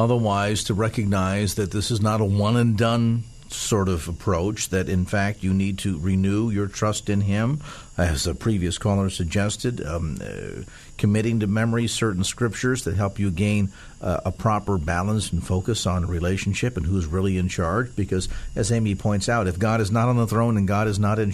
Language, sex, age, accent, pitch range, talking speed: English, male, 50-69, American, 95-115 Hz, 195 wpm